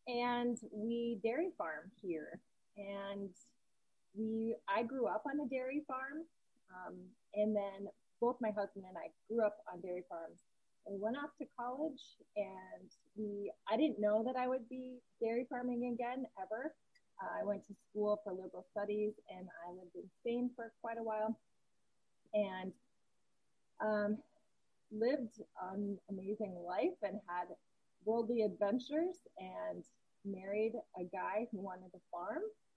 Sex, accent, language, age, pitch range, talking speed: female, American, English, 30-49, 195-235 Hz, 145 wpm